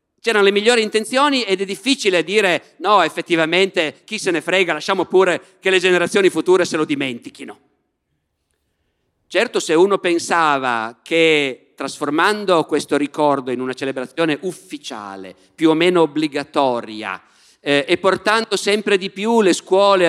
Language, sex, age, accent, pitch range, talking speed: Italian, male, 50-69, native, 135-195 Hz, 140 wpm